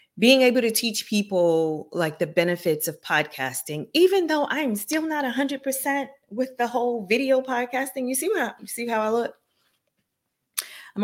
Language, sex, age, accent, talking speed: English, female, 30-49, American, 175 wpm